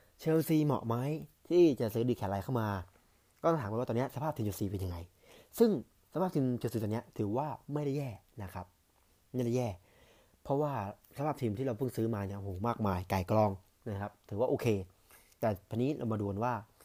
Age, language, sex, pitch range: 20-39, Thai, male, 100-125 Hz